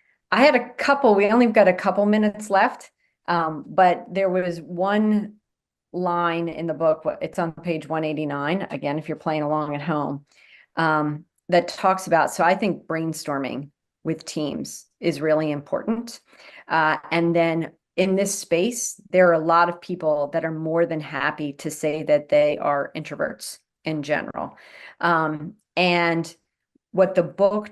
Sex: female